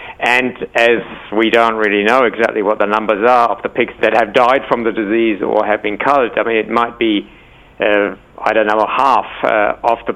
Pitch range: 110-130 Hz